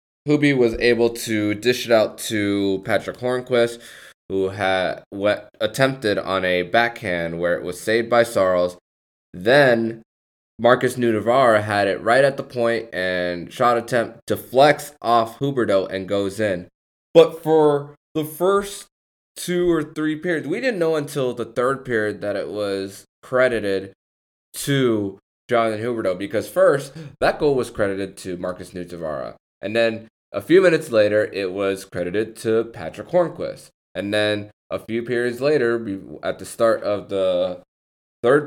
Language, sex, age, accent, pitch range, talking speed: English, male, 20-39, American, 95-125 Hz, 150 wpm